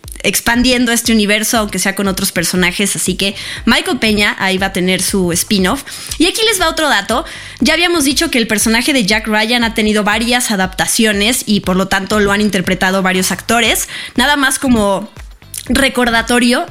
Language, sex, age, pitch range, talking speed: Spanish, female, 20-39, 195-255 Hz, 180 wpm